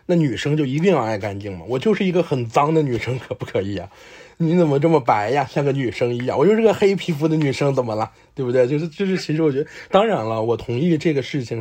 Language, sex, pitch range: Chinese, male, 115-165 Hz